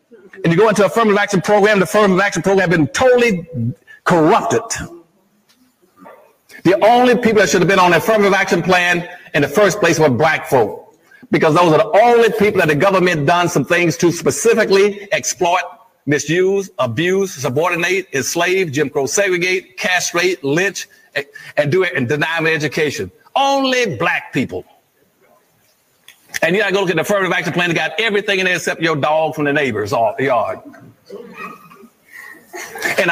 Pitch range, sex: 165-215 Hz, male